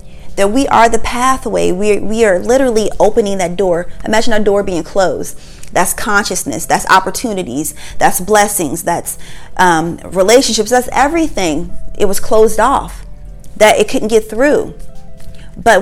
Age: 30-49